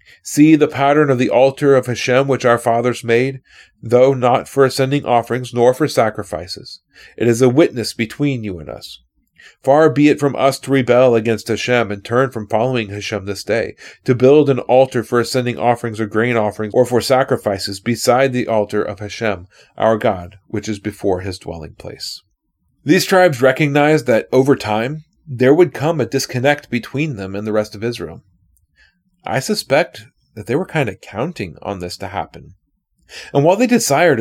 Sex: male